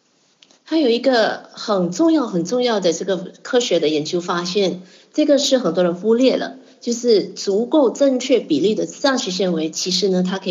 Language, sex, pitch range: Chinese, female, 175-235 Hz